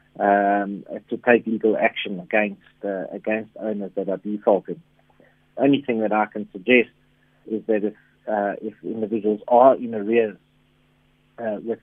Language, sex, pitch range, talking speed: English, male, 100-115 Hz, 145 wpm